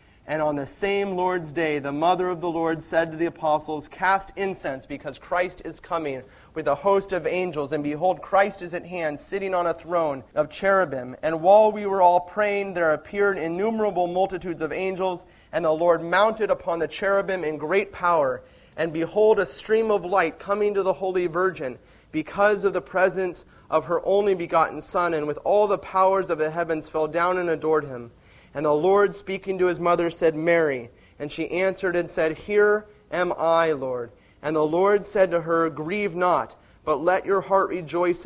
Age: 30-49